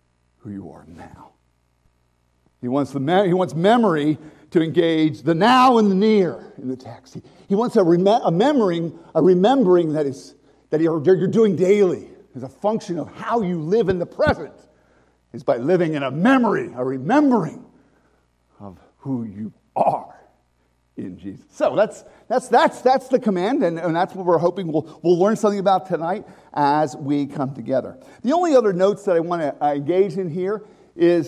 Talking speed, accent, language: 185 wpm, American, English